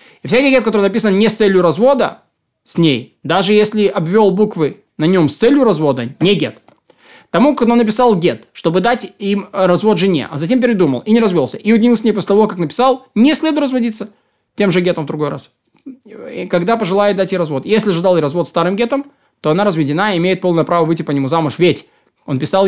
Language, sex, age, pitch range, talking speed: Russian, male, 20-39, 160-210 Hz, 210 wpm